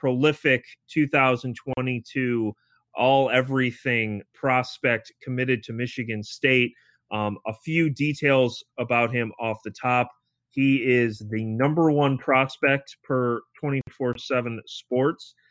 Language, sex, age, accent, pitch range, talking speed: English, male, 30-49, American, 110-135 Hz, 100 wpm